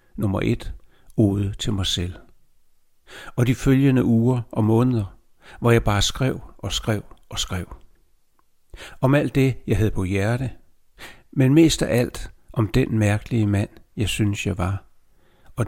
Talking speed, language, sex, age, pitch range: 155 wpm, Danish, male, 60-79, 95-125 Hz